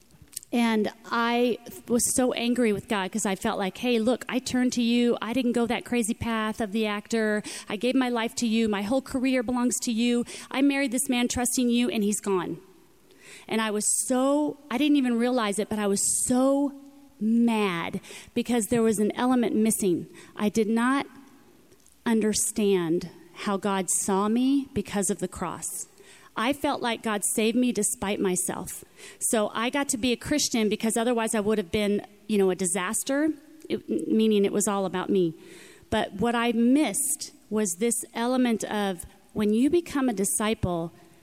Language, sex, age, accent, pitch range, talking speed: English, female, 30-49, American, 200-245 Hz, 180 wpm